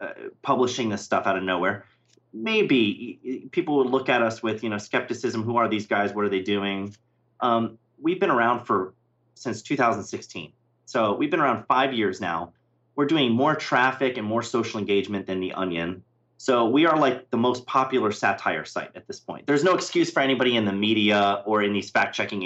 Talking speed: 200 wpm